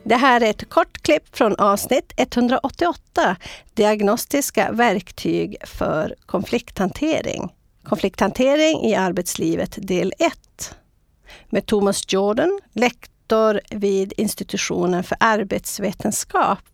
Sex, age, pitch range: female, 50-69, 200-275 Hz